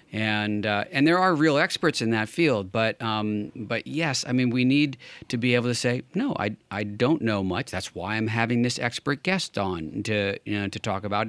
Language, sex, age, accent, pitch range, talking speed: English, male, 40-59, American, 100-130 Hz, 230 wpm